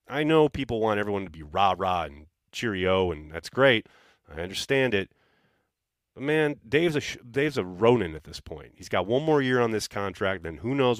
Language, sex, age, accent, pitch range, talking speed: English, male, 30-49, American, 95-130 Hz, 215 wpm